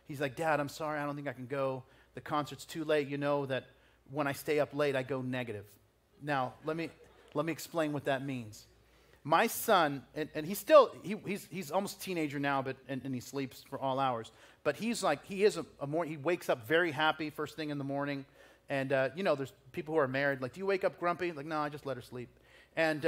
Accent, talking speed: American, 250 wpm